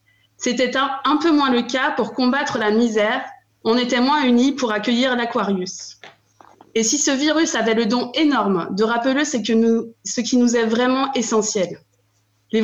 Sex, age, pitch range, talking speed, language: female, 20-39, 205-260 Hz, 180 wpm, French